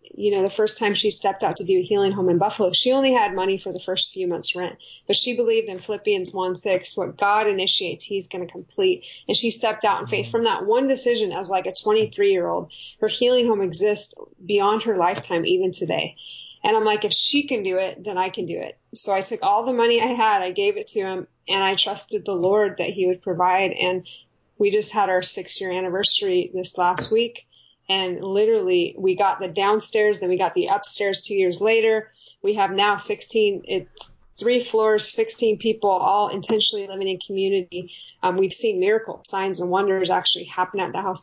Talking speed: 220 wpm